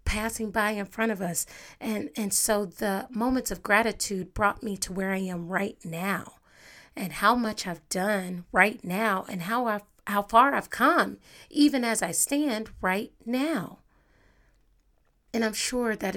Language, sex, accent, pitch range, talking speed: English, female, American, 190-230 Hz, 165 wpm